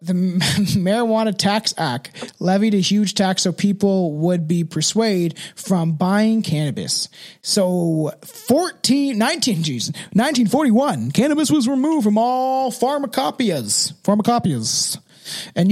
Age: 20-39